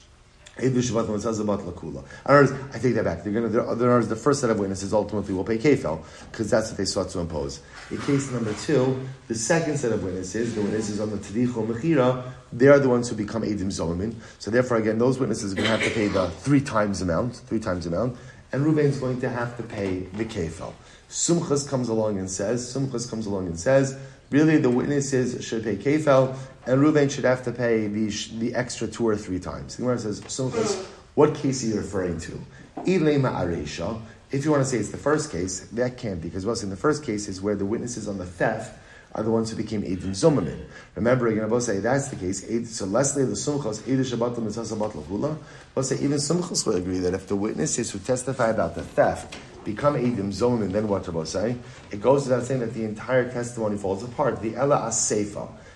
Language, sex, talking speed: English, male, 215 wpm